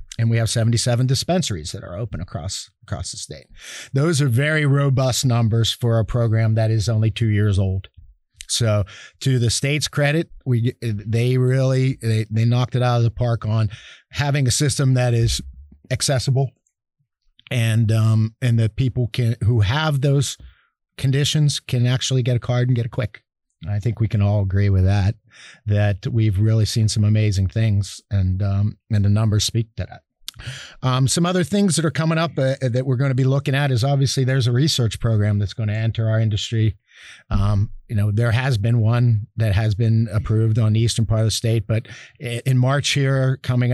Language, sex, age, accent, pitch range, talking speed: English, male, 50-69, American, 110-130 Hz, 195 wpm